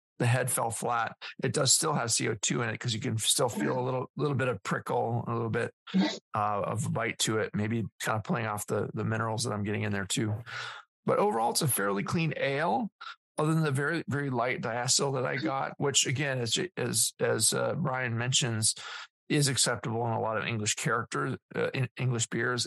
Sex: male